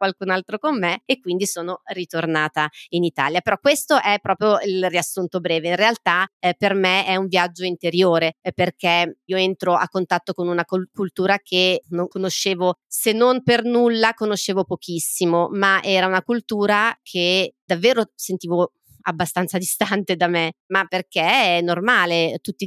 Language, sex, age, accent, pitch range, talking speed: Italian, female, 30-49, native, 175-210 Hz, 155 wpm